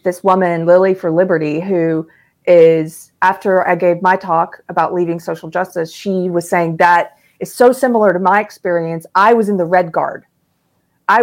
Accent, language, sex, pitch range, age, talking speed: American, English, female, 170-215 Hz, 30-49, 175 wpm